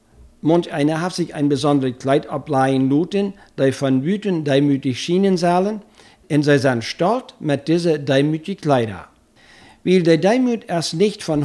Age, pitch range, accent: 60-79, 135-185 Hz, German